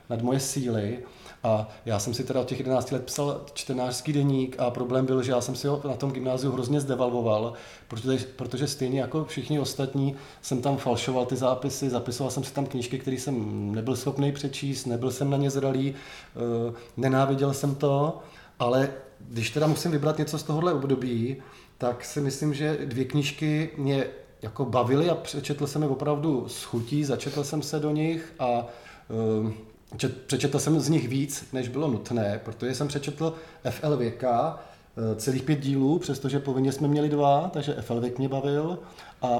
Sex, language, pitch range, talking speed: male, Czech, 125-145 Hz, 175 wpm